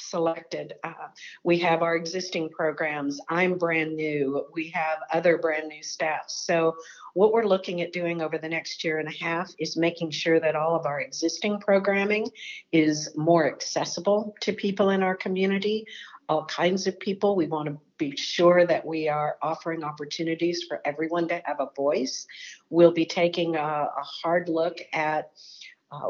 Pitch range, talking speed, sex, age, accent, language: 160-185 Hz, 170 wpm, female, 50-69, American, English